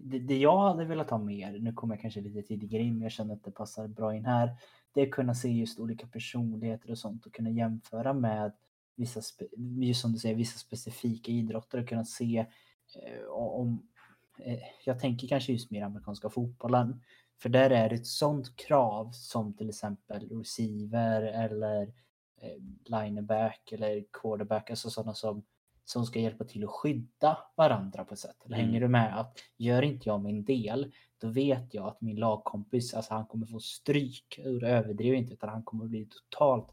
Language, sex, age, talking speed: Swedish, male, 20-39, 190 wpm